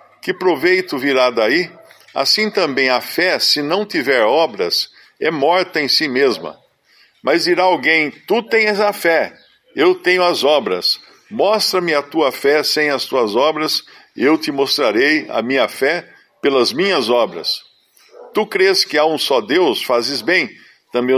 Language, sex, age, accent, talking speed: Portuguese, male, 50-69, Brazilian, 155 wpm